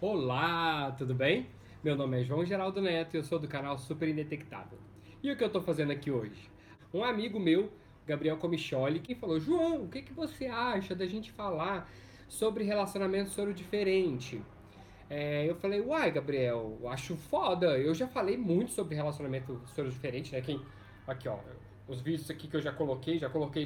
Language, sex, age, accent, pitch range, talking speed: Portuguese, male, 20-39, Brazilian, 130-195 Hz, 175 wpm